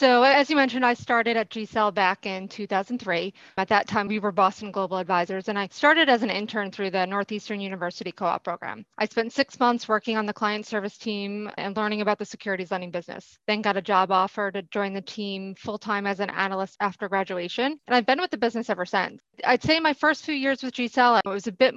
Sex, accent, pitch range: female, American, 195-225 Hz